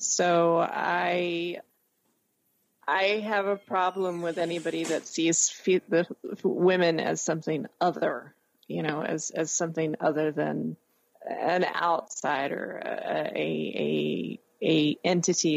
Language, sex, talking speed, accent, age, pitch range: English, female, 115 wpm, American, 30-49, 155-175 Hz